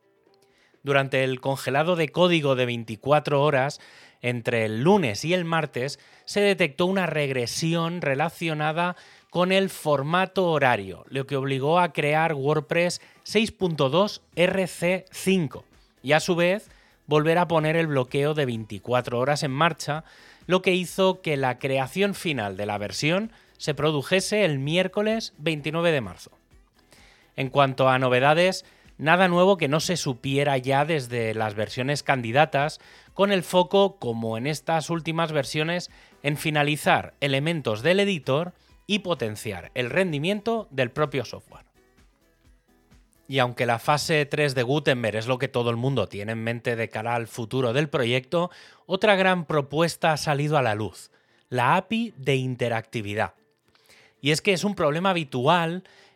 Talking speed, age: 145 wpm, 30-49